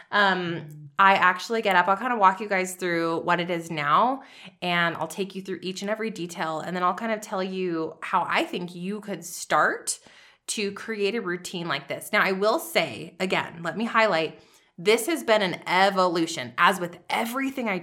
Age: 20-39